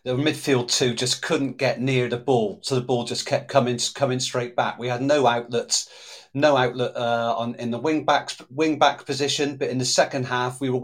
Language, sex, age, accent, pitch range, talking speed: English, male, 40-59, British, 120-135 Hz, 220 wpm